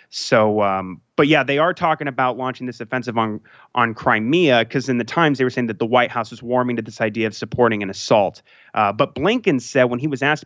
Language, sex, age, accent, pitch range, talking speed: English, male, 30-49, American, 110-135 Hz, 240 wpm